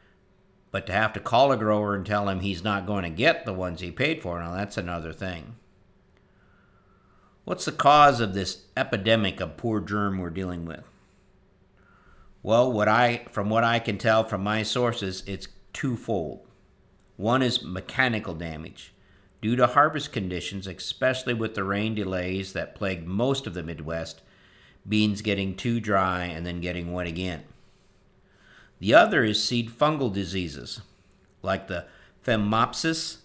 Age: 50-69